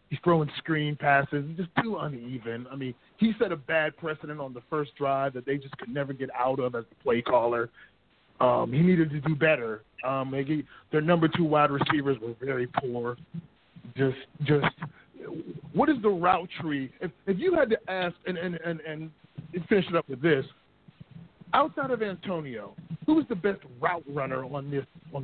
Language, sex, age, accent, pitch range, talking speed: English, male, 40-59, American, 140-180 Hz, 190 wpm